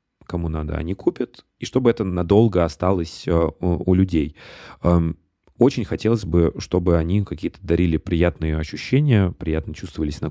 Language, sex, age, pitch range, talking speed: Russian, male, 30-49, 80-105 Hz, 135 wpm